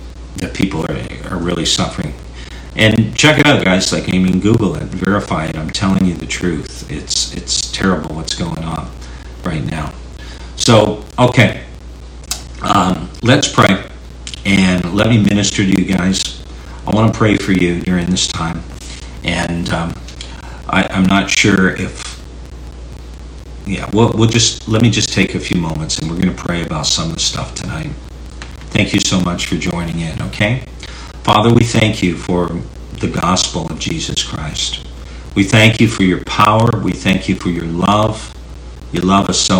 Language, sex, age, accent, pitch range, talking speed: English, male, 50-69, American, 70-95 Hz, 175 wpm